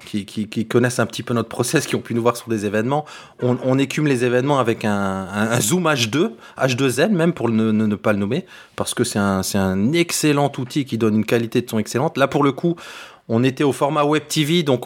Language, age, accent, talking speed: French, 30-49, French, 255 wpm